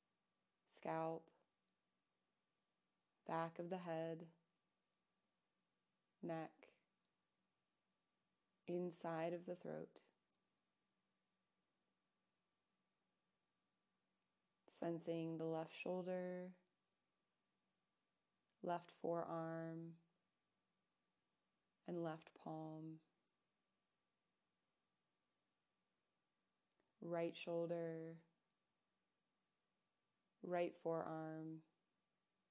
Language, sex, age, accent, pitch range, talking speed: English, female, 20-39, American, 165-175 Hz, 40 wpm